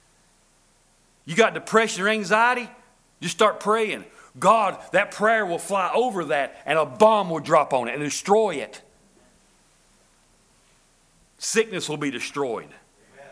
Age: 50-69